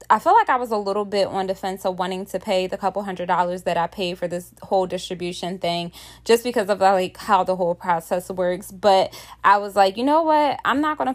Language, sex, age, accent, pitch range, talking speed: English, female, 20-39, American, 175-200 Hz, 255 wpm